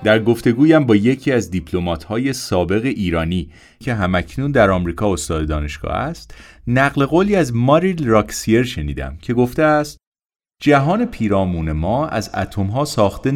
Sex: male